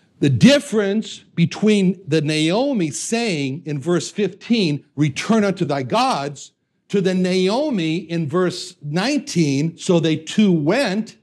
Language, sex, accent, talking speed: English, male, American, 125 wpm